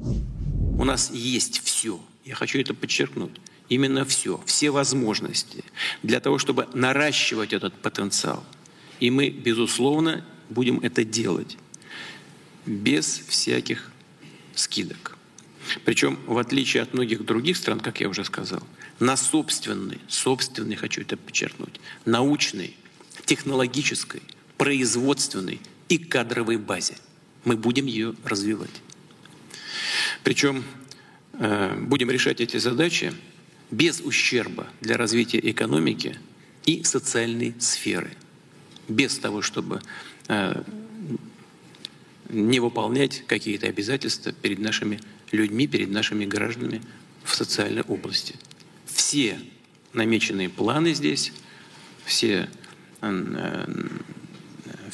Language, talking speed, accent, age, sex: Russian, 100 wpm, native, 50-69, male